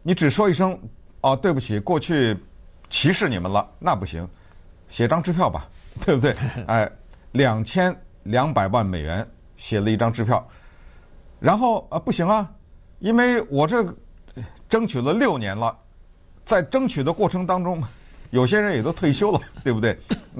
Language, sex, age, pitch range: Chinese, male, 50-69, 100-170 Hz